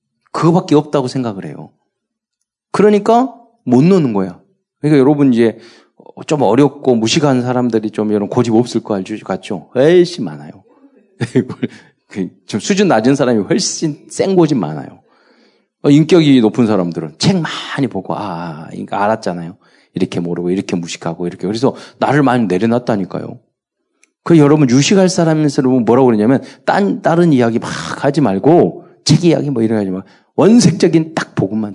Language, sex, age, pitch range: Korean, male, 40-59, 110-175 Hz